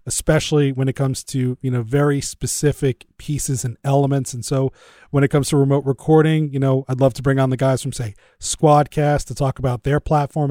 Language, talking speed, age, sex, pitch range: English, 210 wpm, 30-49, male, 135-155 Hz